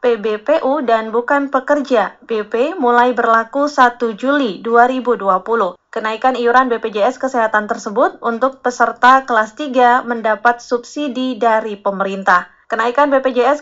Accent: native